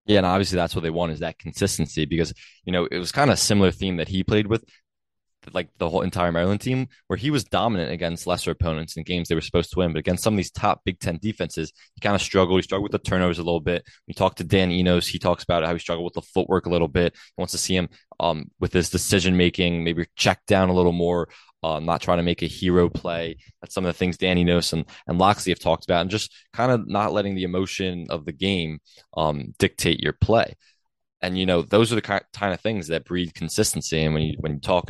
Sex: male